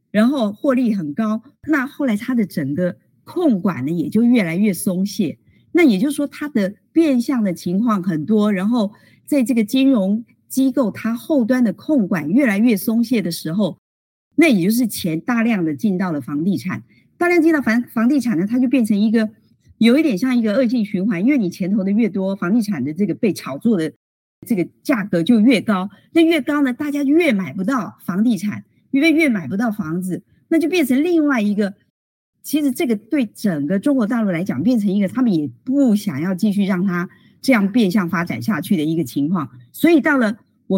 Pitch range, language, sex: 190-260 Hz, Chinese, female